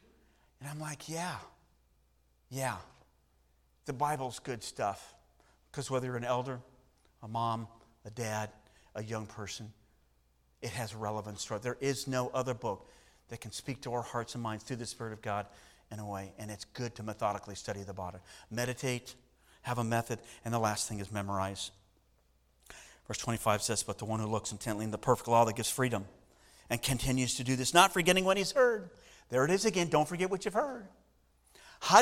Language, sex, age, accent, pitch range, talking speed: English, male, 40-59, American, 100-140 Hz, 190 wpm